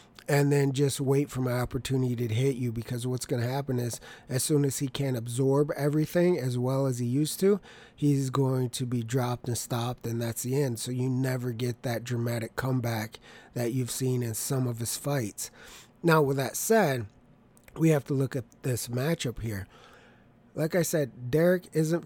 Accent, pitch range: American, 120-150 Hz